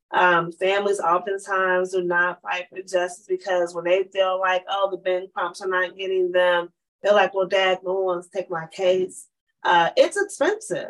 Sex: female